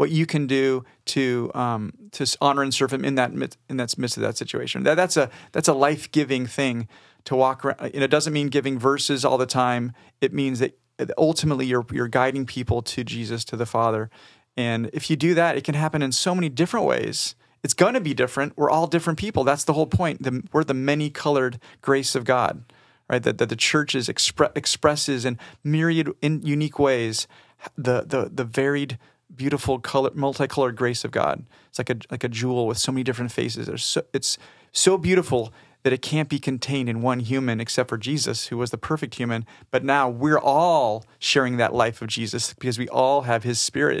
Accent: American